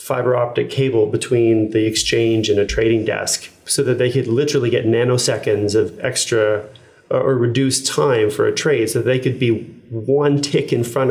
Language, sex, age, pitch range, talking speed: English, male, 30-49, 115-140 Hz, 180 wpm